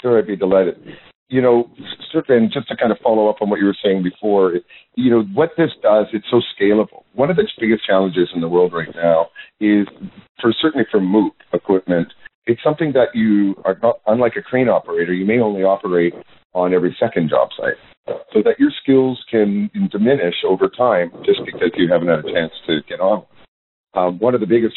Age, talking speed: 50-69, 205 wpm